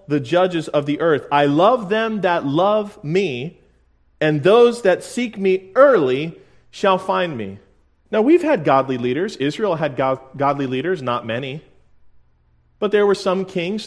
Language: English